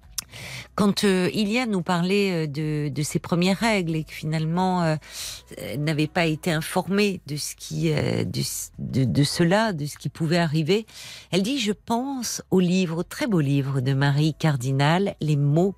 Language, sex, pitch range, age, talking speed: French, female, 145-190 Hz, 50-69, 175 wpm